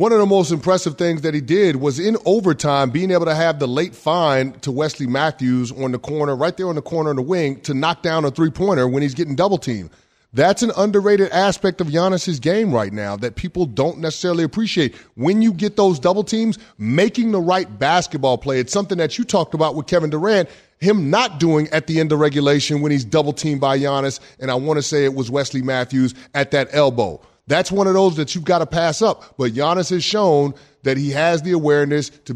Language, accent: English, American